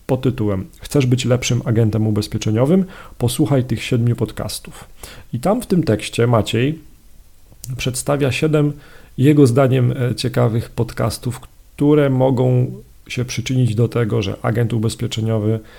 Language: Polish